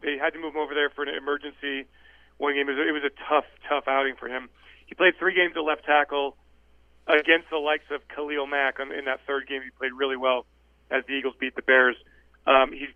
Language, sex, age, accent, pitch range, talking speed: English, male, 40-59, American, 130-155 Hz, 225 wpm